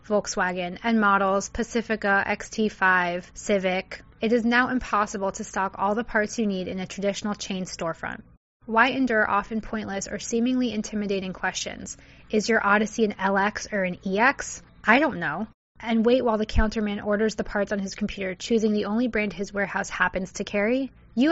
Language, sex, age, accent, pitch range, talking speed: English, female, 20-39, American, 195-225 Hz, 175 wpm